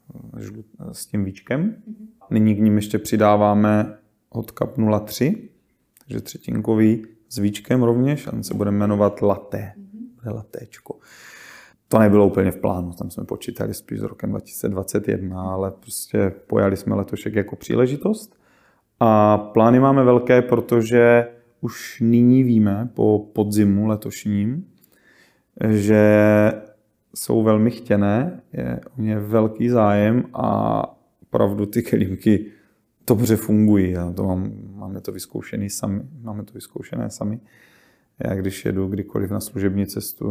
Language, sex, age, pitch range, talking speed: Czech, male, 30-49, 100-115 Hz, 125 wpm